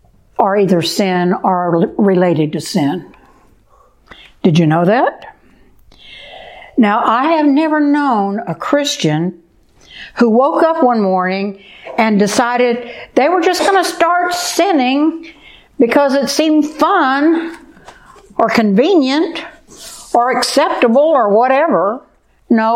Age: 60-79